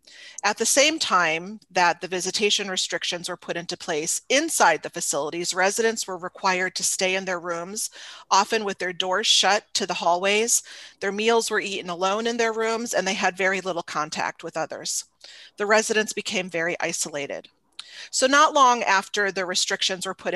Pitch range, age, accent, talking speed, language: 180-215 Hz, 40-59, American, 175 wpm, English